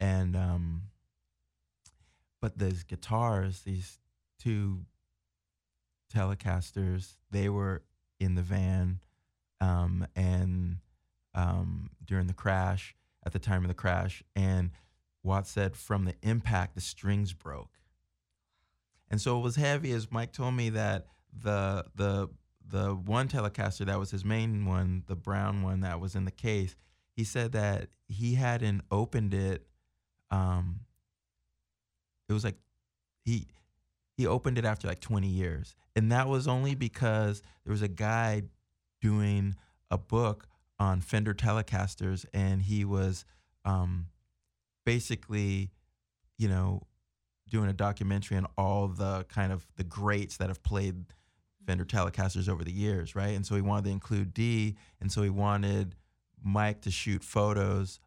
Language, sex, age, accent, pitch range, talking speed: English, male, 20-39, American, 90-105 Hz, 140 wpm